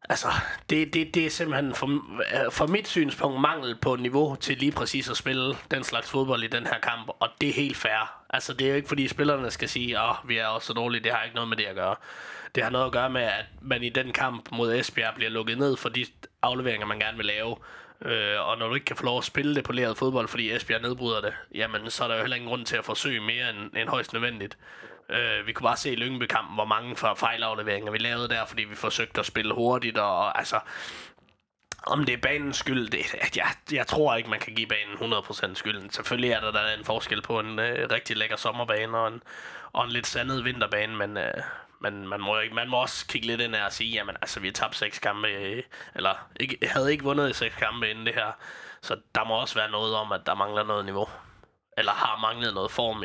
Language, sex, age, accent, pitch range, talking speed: Danish, male, 20-39, native, 110-135 Hz, 245 wpm